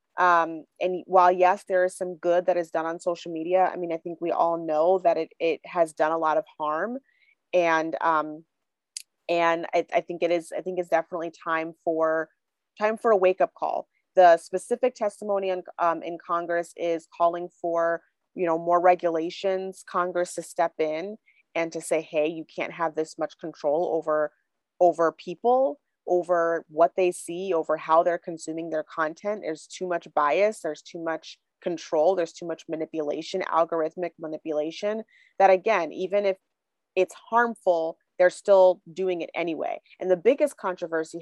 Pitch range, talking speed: 165-190 Hz, 175 wpm